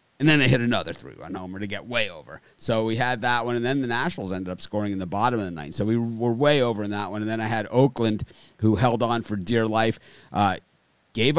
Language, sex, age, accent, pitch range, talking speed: English, male, 30-49, American, 105-130 Hz, 265 wpm